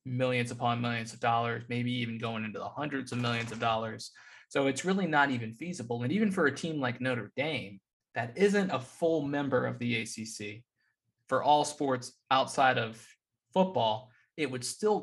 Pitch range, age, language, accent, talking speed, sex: 115-140 Hz, 20-39, English, American, 185 wpm, male